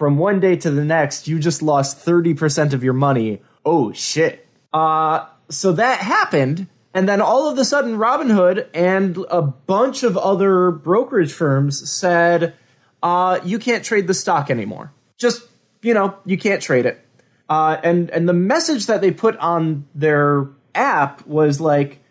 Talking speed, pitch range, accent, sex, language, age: 165 wpm, 140-185 Hz, American, male, English, 20-39